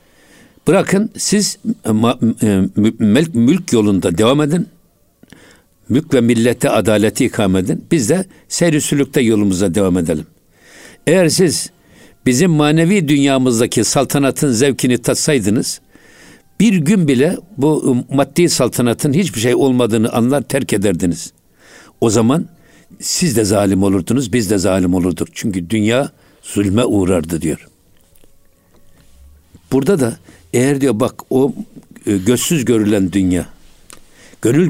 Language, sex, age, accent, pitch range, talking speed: Turkish, male, 60-79, native, 105-145 Hz, 110 wpm